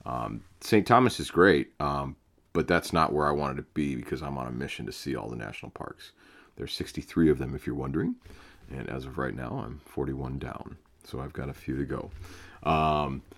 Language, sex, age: English, male, 40-59